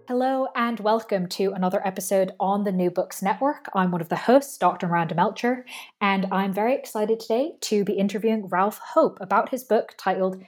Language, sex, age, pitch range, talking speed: English, female, 20-39, 180-235 Hz, 190 wpm